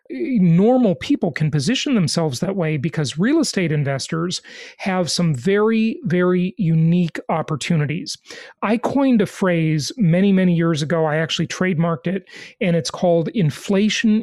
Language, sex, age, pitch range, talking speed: English, male, 40-59, 165-220 Hz, 140 wpm